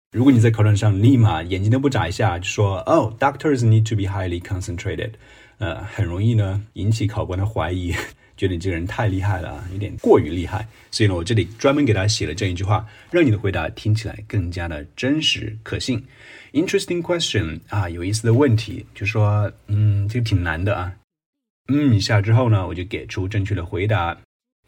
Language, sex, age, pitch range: Chinese, male, 30-49, 95-115 Hz